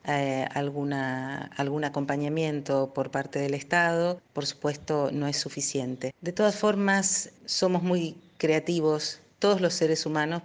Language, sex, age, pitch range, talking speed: Spanish, female, 40-59, 135-155 Hz, 125 wpm